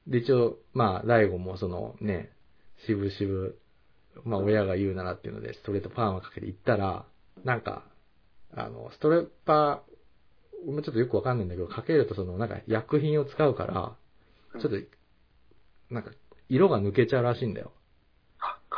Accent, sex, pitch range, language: native, male, 95-120 Hz, Japanese